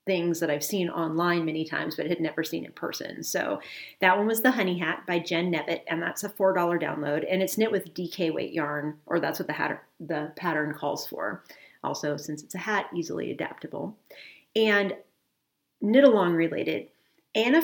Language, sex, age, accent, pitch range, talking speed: English, female, 40-59, American, 165-220 Hz, 195 wpm